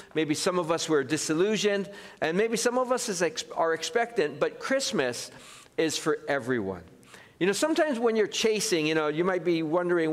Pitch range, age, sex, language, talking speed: 155-195 Hz, 50-69, male, English, 180 wpm